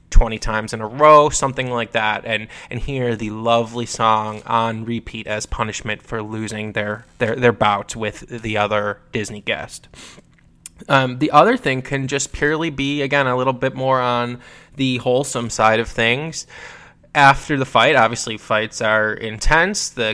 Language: English